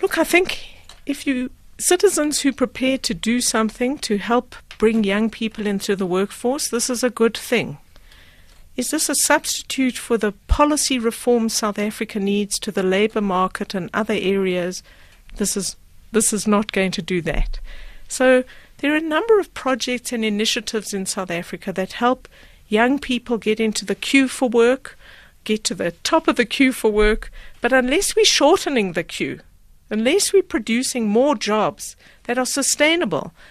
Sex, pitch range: female, 210-260 Hz